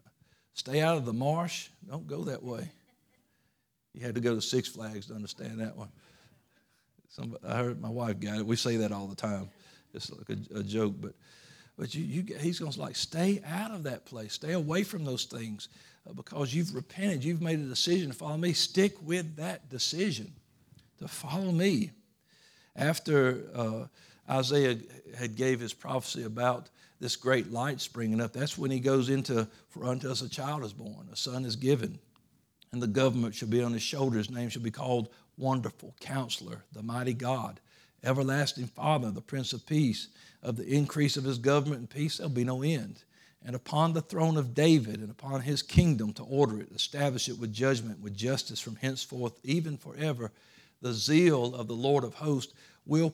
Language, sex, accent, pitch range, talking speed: English, male, American, 115-155 Hz, 185 wpm